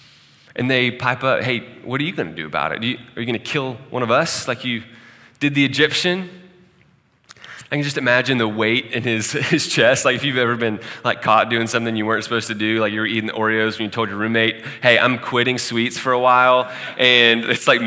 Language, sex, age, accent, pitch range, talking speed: English, male, 20-39, American, 110-130 Hz, 245 wpm